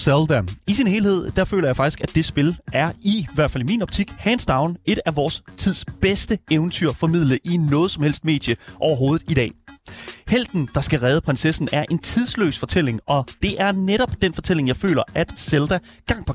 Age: 30-49